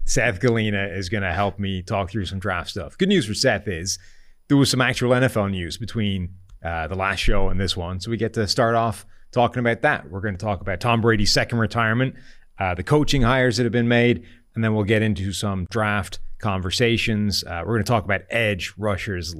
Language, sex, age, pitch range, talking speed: English, male, 30-49, 95-125 Hz, 225 wpm